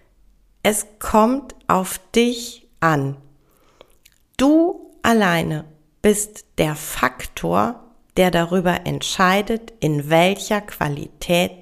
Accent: German